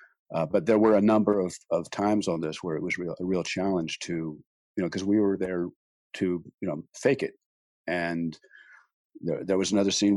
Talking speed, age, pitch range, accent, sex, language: 205 wpm, 50-69, 85-100 Hz, American, male, English